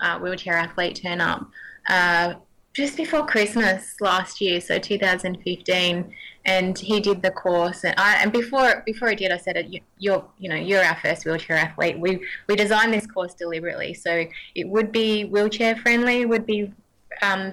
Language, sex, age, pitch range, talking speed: English, female, 20-39, 175-200 Hz, 175 wpm